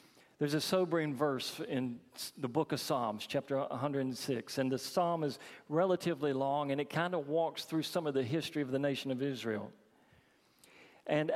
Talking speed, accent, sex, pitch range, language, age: 175 wpm, American, male, 125-150 Hz, English, 50-69